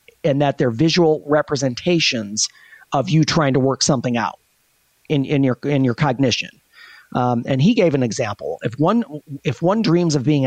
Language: English